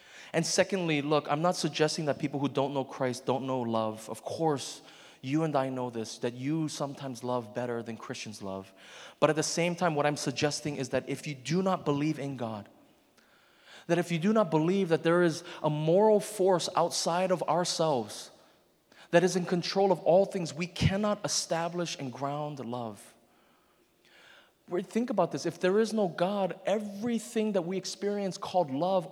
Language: English